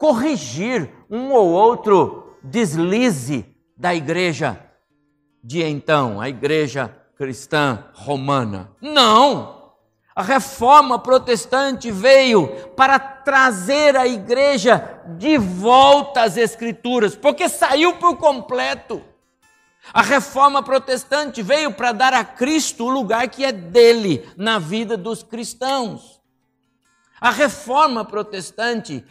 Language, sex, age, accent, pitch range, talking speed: Portuguese, male, 60-79, Brazilian, 160-260 Hz, 105 wpm